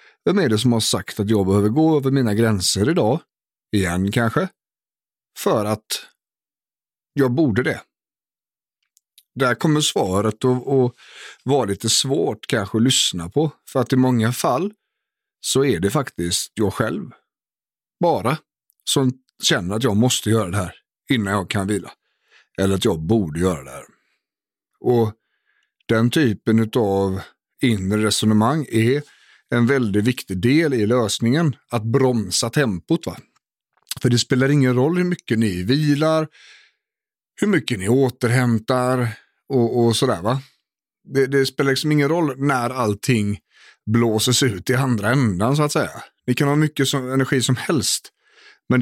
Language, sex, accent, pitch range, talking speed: English, male, Swedish, 110-135 Hz, 145 wpm